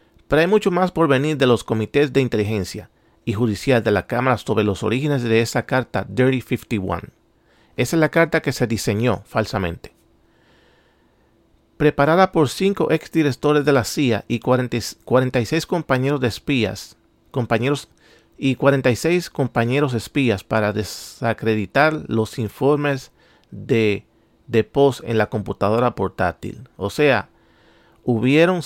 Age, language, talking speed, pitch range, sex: 40-59, Spanish, 130 wpm, 110-145 Hz, male